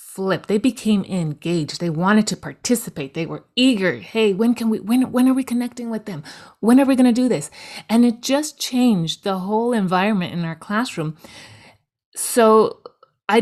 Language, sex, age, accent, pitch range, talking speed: English, female, 30-49, American, 175-220 Hz, 185 wpm